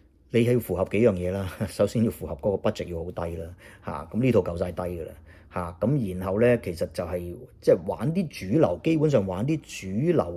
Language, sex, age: Chinese, male, 30-49